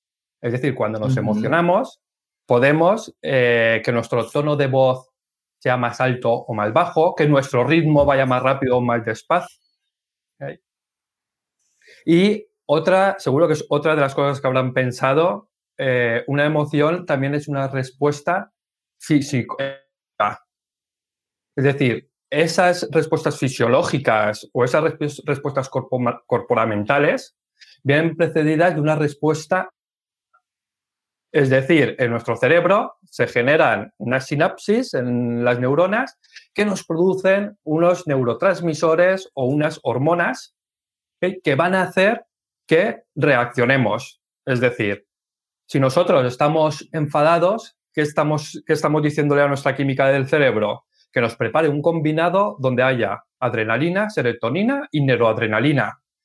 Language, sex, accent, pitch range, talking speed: Spanish, male, Spanish, 125-165 Hz, 120 wpm